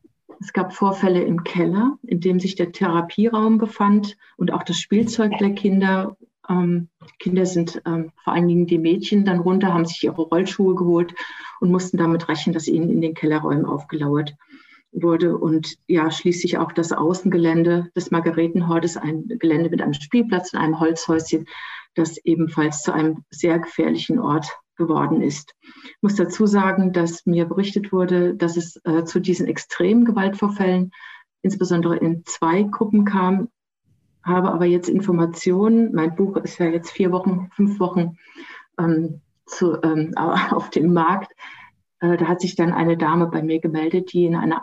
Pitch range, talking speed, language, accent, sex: 165-195 Hz, 160 wpm, German, German, female